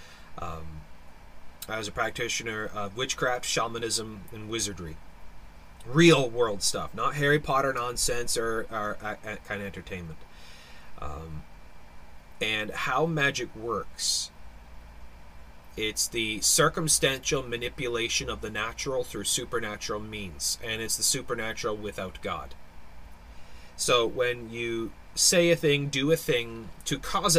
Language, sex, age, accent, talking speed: English, male, 30-49, American, 120 wpm